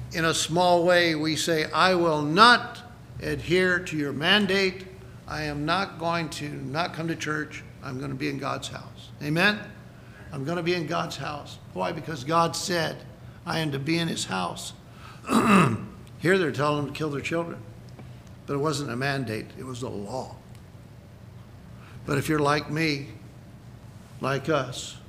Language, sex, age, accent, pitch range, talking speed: English, male, 60-79, American, 130-165 Hz, 170 wpm